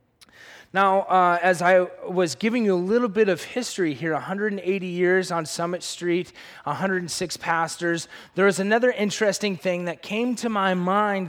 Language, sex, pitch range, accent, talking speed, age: English, male, 155-205 Hz, American, 160 wpm, 20-39